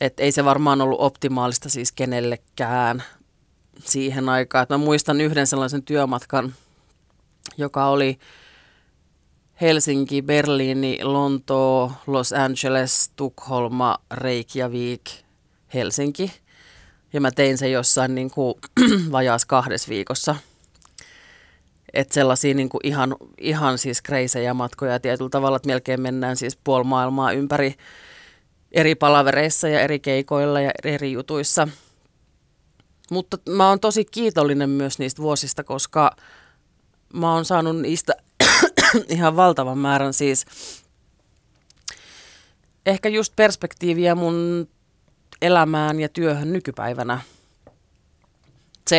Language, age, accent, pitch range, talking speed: Finnish, 30-49, native, 130-150 Hz, 105 wpm